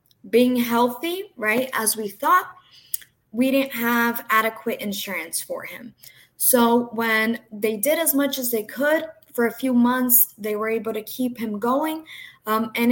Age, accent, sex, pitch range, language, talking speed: 20-39, American, female, 225-270 Hz, English, 165 wpm